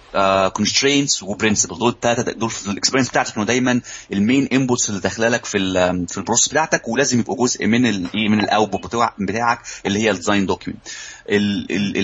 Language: Arabic